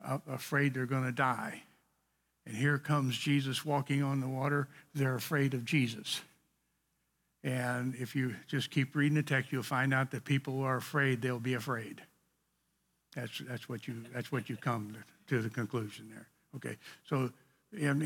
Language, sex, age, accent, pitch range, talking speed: English, male, 60-79, American, 125-150 Hz, 175 wpm